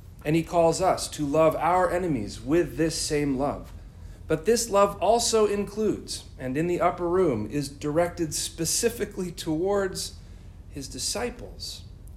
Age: 40-59